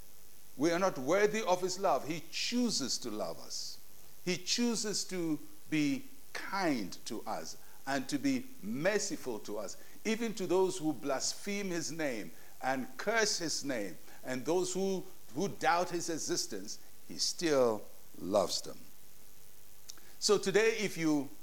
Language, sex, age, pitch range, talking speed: English, male, 60-79, 140-190 Hz, 145 wpm